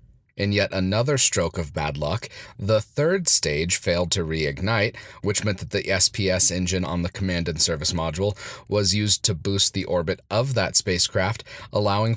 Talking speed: 175 wpm